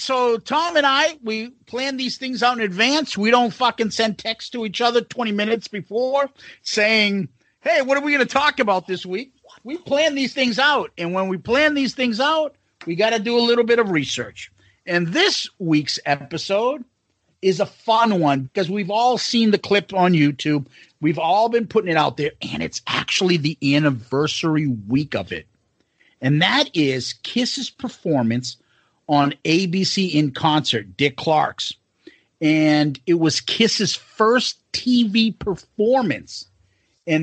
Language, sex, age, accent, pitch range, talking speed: English, male, 50-69, American, 150-235 Hz, 170 wpm